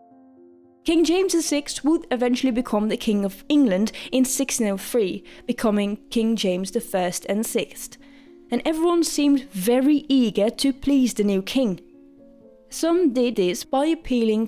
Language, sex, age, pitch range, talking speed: English, female, 20-39, 220-280 Hz, 135 wpm